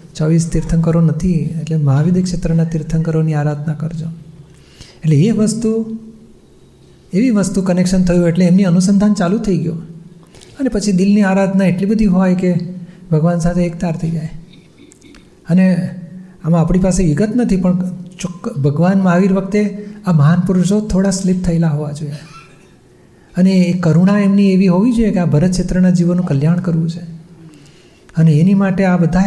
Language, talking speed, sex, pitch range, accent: Gujarati, 150 wpm, male, 160-185 Hz, native